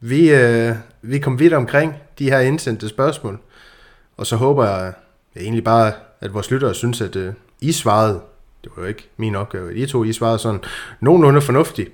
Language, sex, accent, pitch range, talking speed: Danish, male, native, 105-130 Hz, 185 wpm